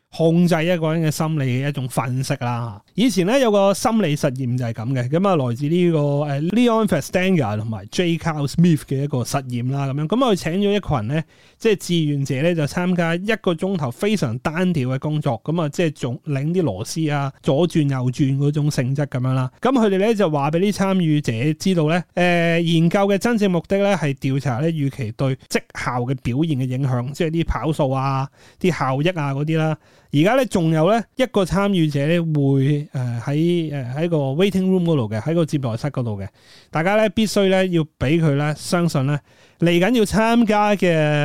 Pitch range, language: 140-180 Hz, Chinese